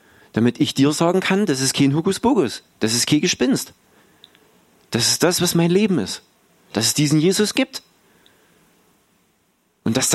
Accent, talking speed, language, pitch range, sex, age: German, 160 wpm, German, 115-175 Hz, male, 40-59